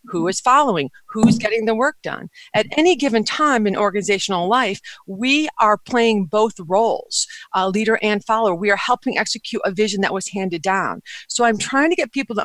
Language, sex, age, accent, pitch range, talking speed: English, female, 50-69, American, 195-255 Hz, 200 wpm